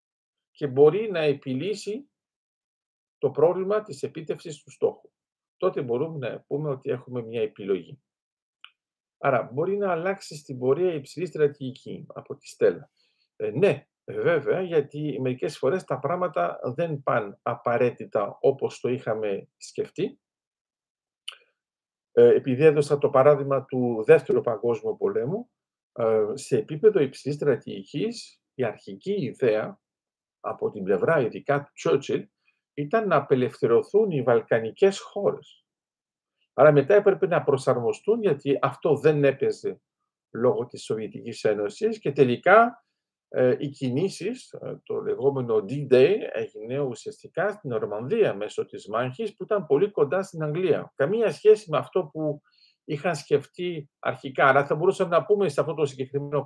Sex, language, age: male, Greek, 50-69